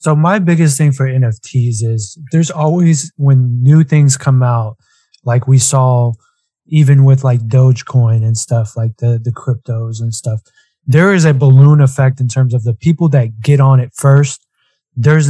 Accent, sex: American, male